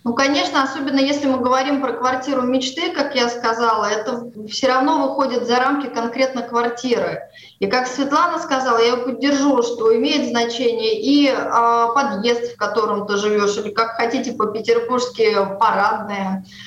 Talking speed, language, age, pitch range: 150 wpm, Russian, 20-39, 220-260 Hz